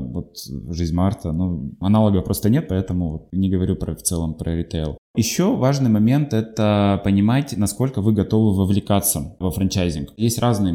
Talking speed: 155 wpm